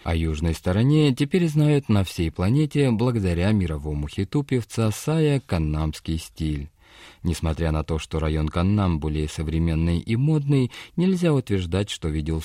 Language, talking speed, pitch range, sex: Russian, 135 wpm, 80-130 Hz, male